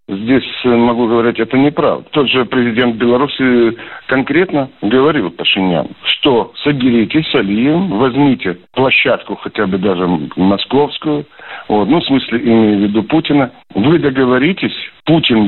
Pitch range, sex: 110-135 Hz, male